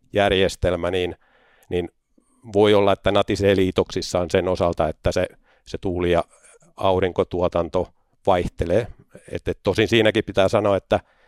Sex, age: male, 50-69